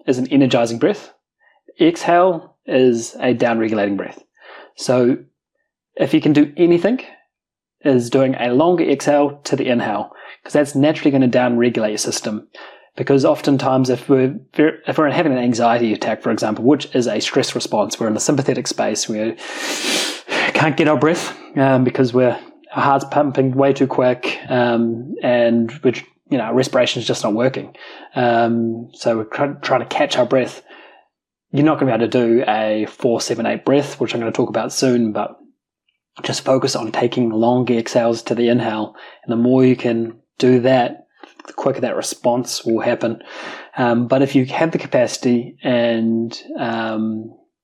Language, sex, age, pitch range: English, male, 30-49, 115-140 Hz